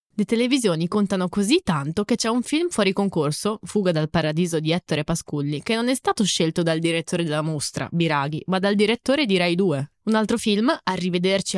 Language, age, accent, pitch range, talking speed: Italian, 20-39, native, 175-225 Hz, 190 wpm